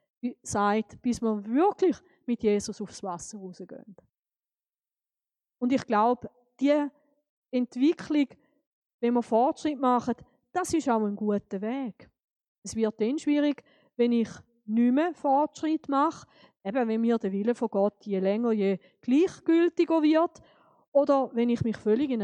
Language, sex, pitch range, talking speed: German, female, 215-290 Hz, 145 wpm